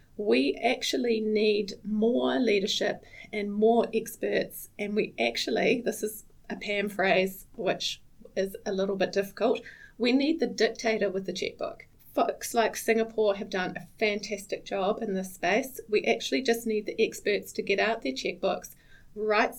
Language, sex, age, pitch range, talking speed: English, female, 30-49, 195-220 Hz, 160 wpm